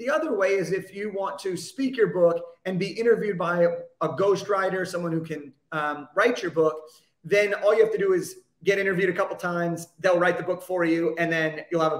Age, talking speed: 30-49, 235 wpm